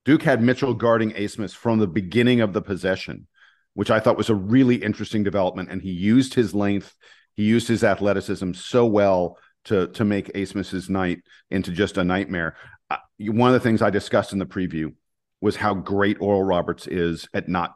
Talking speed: 195 wpm